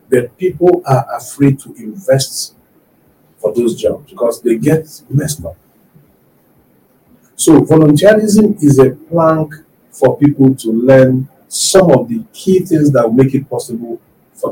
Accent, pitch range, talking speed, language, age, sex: Nigerian, 125-185 Hz, 135 wpm, English, 50-69, male